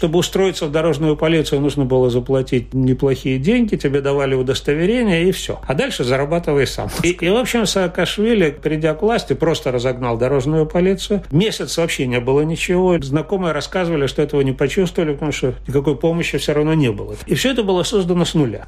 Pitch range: 135-175 Hz